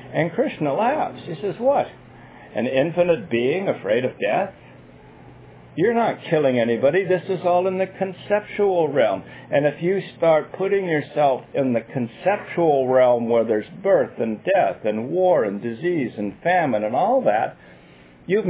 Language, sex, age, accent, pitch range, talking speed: English, male, 60-79, American, 130-175 Hz, 155 wpm